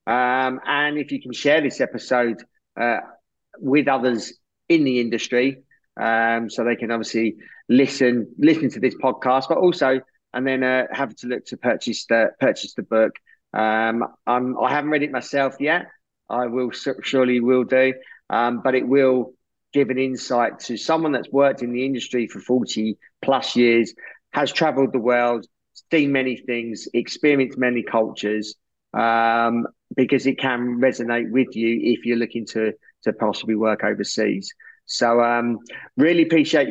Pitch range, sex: 120-135 Hz, male